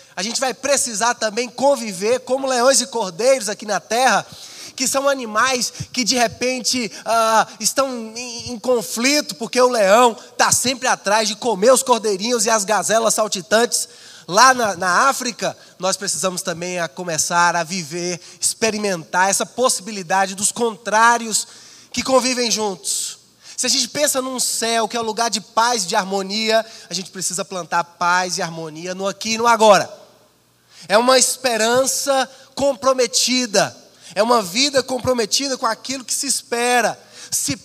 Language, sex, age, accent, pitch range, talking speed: Portuguese, male, 20-39, Brazilian, 200-250 Hz, 155 wpm